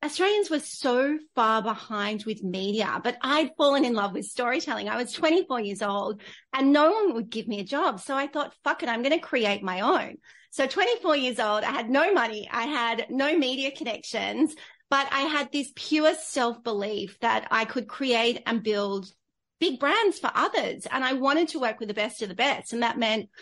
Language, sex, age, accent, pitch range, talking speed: English, female, 30-49, Australian, 215-270 Hz, 210 wpm